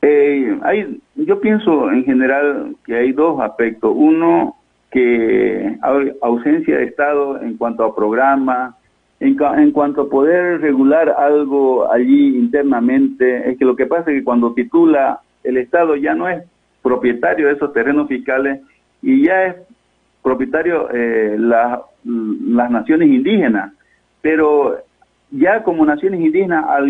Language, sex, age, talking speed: Spanish, male, 50-69, 145 wpm